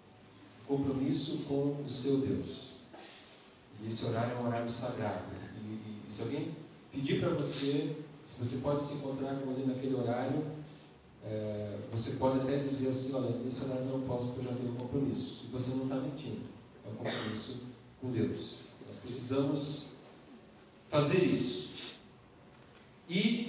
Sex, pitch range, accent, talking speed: male, 120-145 Hz, Brazilian, 150 wpm